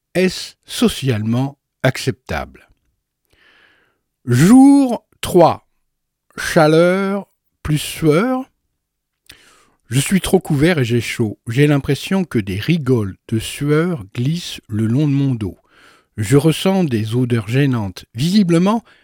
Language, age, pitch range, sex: French, 60-79, 115-165 Hz, male